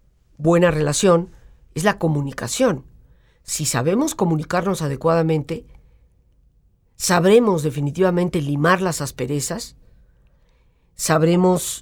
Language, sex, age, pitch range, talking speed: Spanish, female, 50-69, 150-225 Hz, 75 wpm